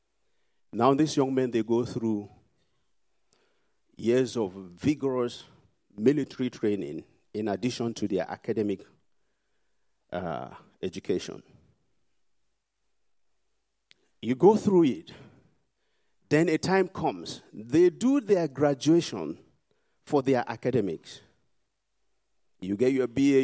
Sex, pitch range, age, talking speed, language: male, 115-150 Hz, 50-69, 95 wpm, English